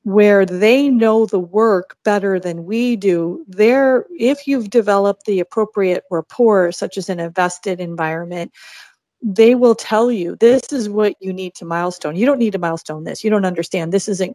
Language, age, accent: English, 40-59, American